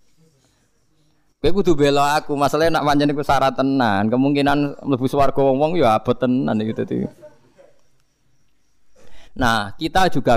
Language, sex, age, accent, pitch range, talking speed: Indonesian, male, 20-39, native, 110-150 Hz, 75 wpm